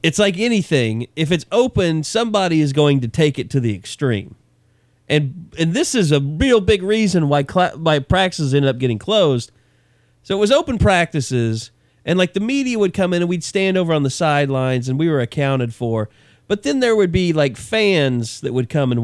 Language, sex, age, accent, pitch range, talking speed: English, male, 40-59, American, 120-165 Hz, 210 wpm